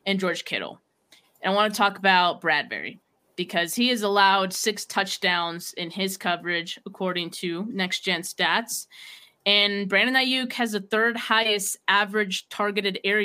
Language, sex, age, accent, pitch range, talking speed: English, female, 20-39, American, 180-215 Hz, 155 wpm